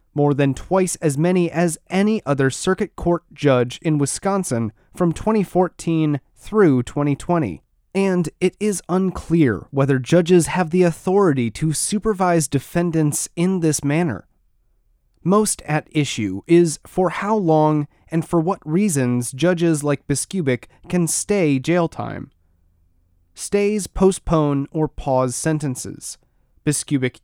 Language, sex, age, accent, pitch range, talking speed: English, male, 30-49, American, 135-180 Hz, 125 wpm